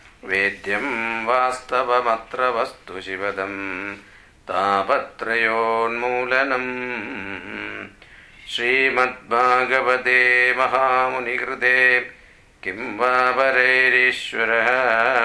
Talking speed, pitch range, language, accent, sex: 40 wpm, 110-125 Hz, English, Indian, male